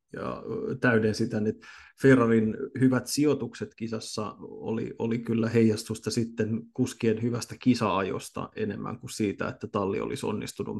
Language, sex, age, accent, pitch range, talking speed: Finnish, male, 30-49, native, 110-125 Hz, 130 wpm